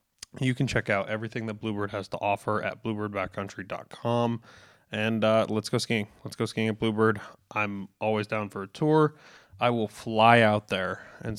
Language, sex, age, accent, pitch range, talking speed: English, male, 20-39, American, 105-115 Hz, 180 wpm